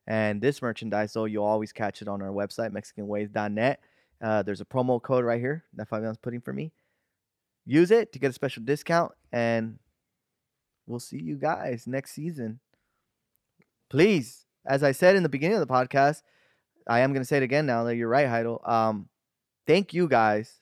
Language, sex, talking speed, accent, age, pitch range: English, male, 185 wpm, American, 20-39, 105-130 Hz